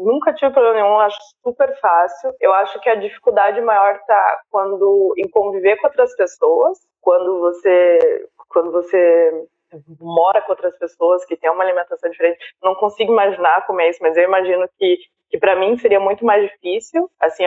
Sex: female